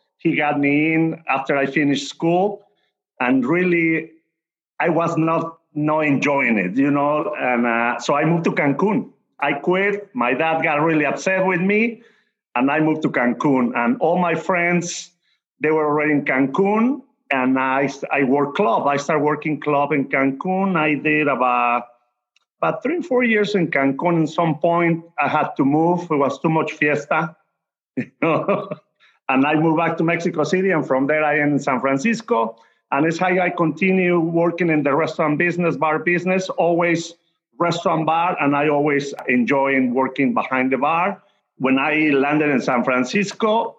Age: 50-69